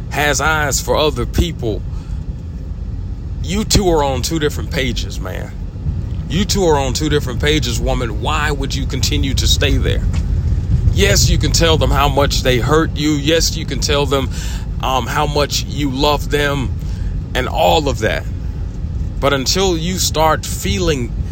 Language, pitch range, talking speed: English, 80-110 Hz, 165 wpm